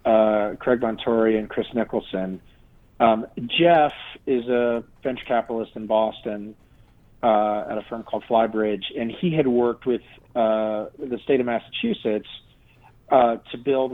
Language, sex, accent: English, male, American